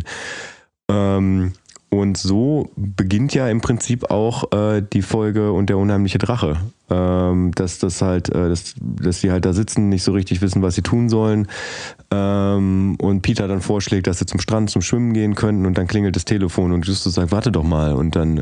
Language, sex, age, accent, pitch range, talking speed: German, male, 20-39, German, 95-110 Hz, 190 wpm